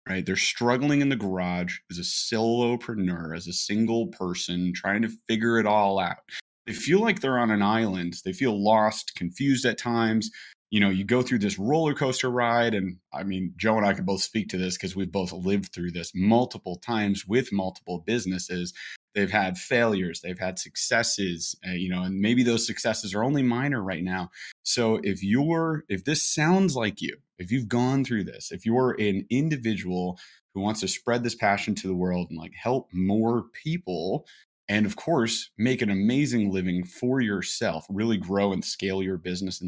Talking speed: 195 wpm